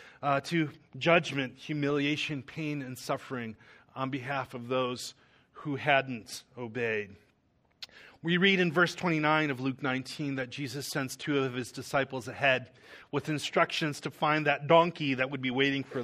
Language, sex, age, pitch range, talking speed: English, male, 30-49, 125-150 Hz, 155 wpm